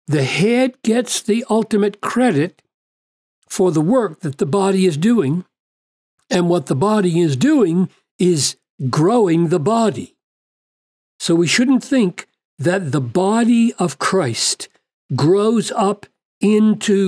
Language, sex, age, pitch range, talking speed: English, male, 60-79, 150-205 Hz, 125 wpm